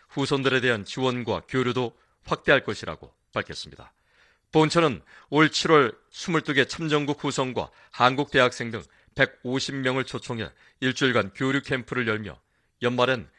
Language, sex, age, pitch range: Korean, male, 40-59, 120-145 Hz